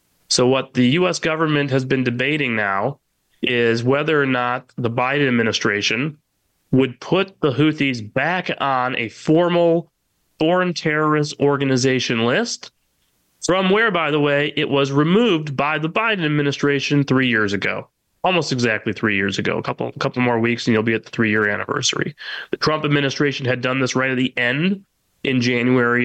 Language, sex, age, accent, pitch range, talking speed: English, male, 30-49, American, 120-150 Hz, 170 wpm